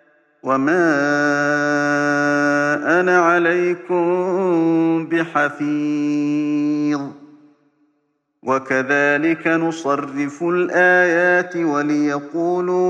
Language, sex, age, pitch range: Arabic, male, 40-59, 145-175 Hz